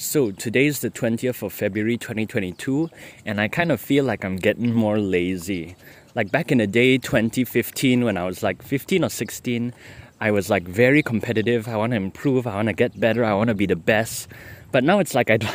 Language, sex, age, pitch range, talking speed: English, male, 20-39, 105-125 Hz, 215 wpm